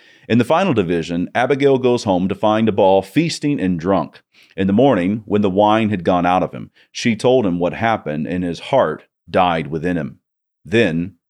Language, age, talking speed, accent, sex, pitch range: English, 40-59, 190 wpm, American, male, 90-120 Hz